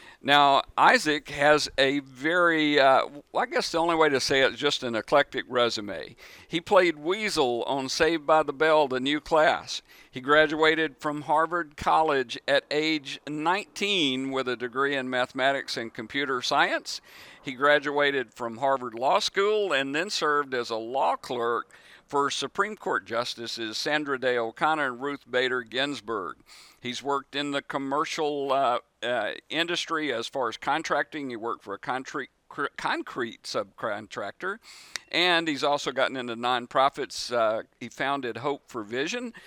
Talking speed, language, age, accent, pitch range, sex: 155 wpm, English, 50-69, American, 125-155 Hz, male